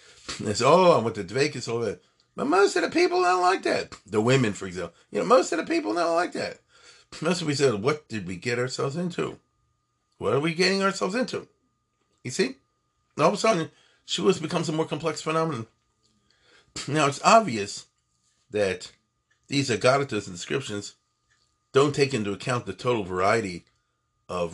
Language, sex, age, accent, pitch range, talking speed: English, male, 40-59, American, 105-150 Hz, 185 wpm